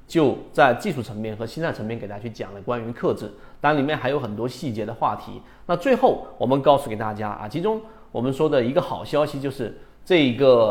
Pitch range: 110-150 Hz